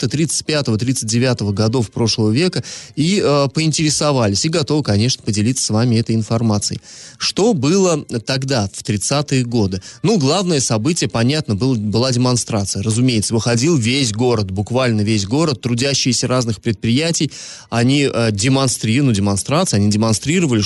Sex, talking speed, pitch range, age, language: male, 130 wpm, 115-150 Hz, 20-39, Russian